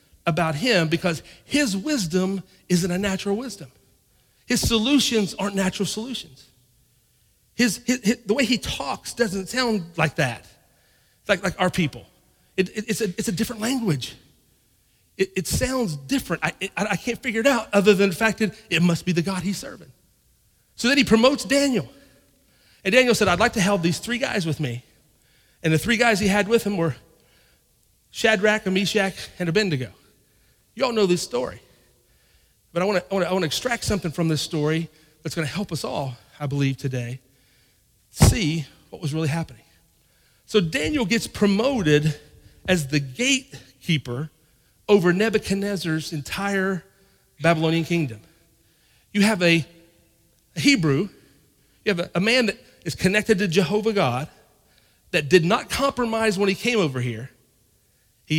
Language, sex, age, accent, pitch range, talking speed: English, male, 40-59, American, 155-215 Hz, 160 wpm